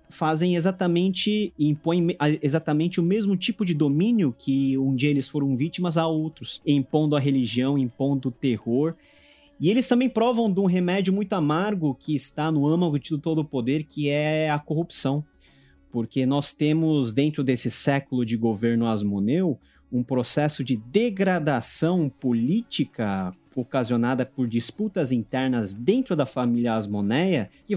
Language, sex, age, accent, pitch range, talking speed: Portuguese, male, 30-49, Brazilian, 125-180 Hz, 145 wpm